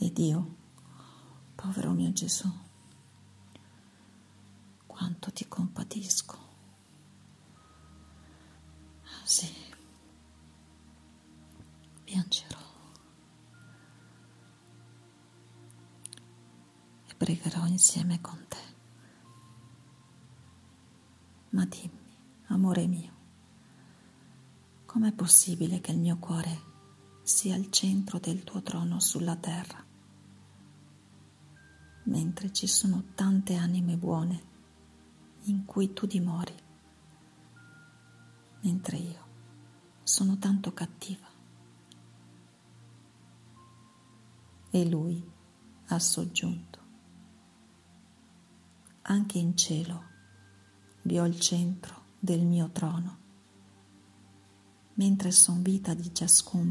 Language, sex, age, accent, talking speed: Italian, female, 40-59, native, 75 wpm